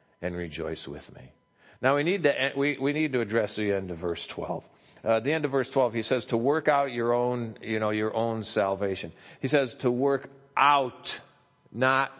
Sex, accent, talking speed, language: male, American, 200 wpm, English